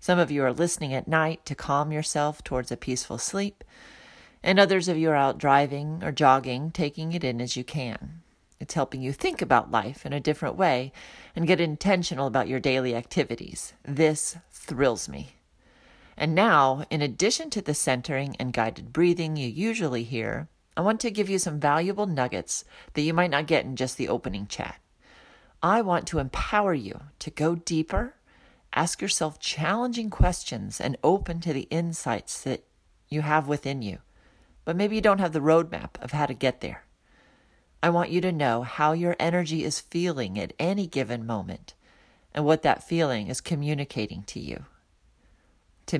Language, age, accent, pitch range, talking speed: English, 40-59, American, 130-170 Hz, 180 wpm